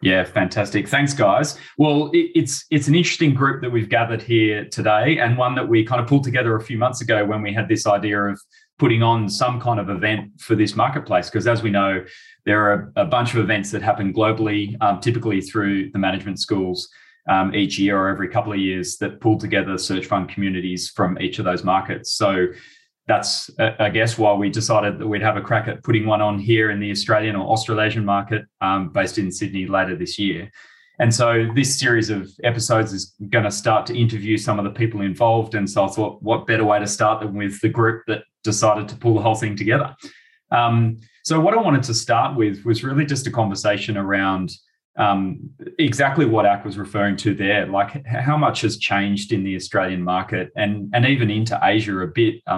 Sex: male